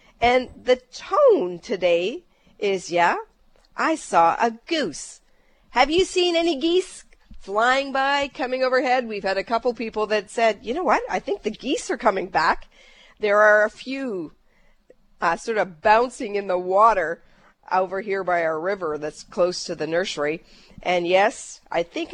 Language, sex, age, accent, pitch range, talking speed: English, female, 50-69, American, 185-250 Hz, 165 wpm